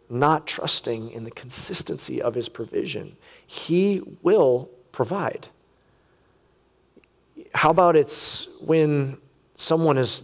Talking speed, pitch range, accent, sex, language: 100 wpm, 125-160 Hz, American, male, English